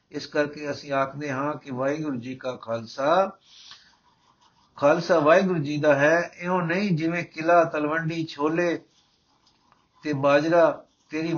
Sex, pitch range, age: male, 140-170 Hz, 60-79